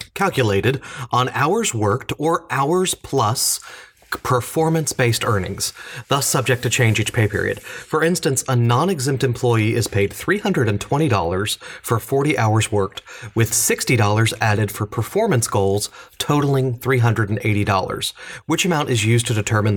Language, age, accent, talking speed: English, 30-49, American, 130 wpm